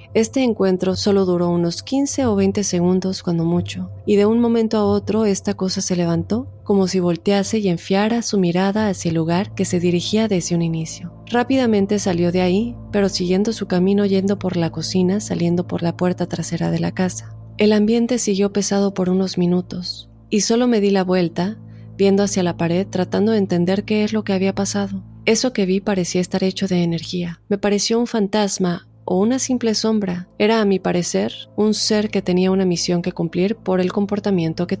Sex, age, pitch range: female, 30-49, 175-205 Hz